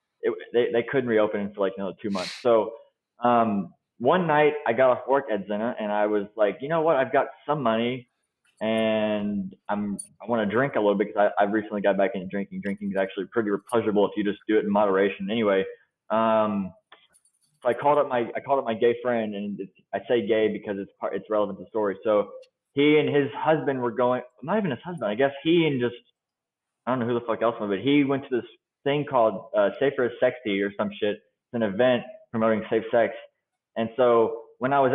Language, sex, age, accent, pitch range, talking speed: English, male, 20-39, American, 105-140 Hz, 235 wpm